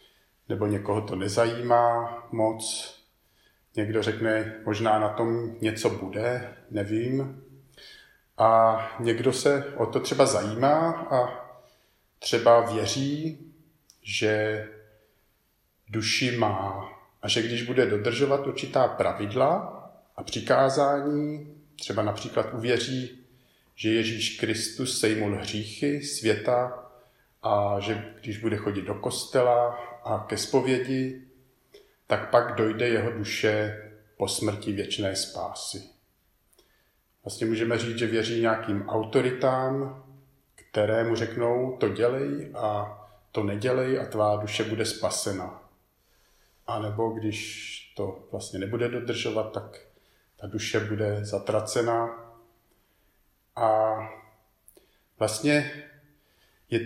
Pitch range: 105-125 Hz